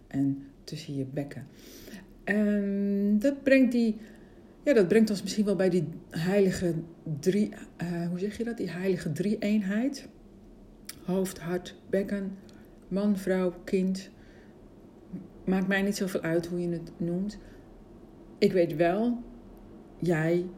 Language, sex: Dutch, female